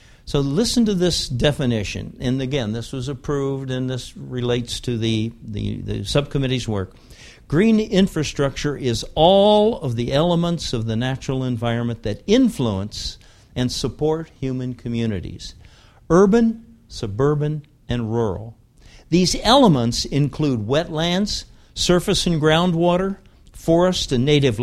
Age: 60-79